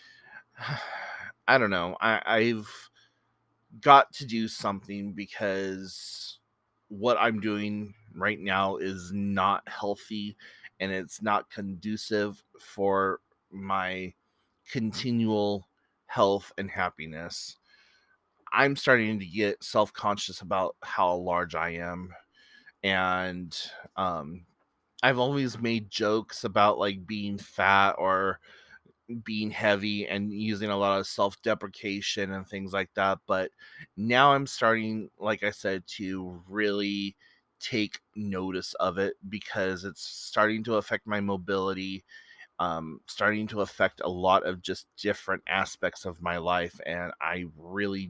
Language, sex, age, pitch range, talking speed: English, male, 30-49, 95-110 Hz, 120 wpm